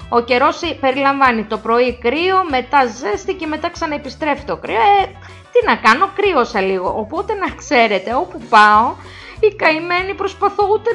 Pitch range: 220-315 Hz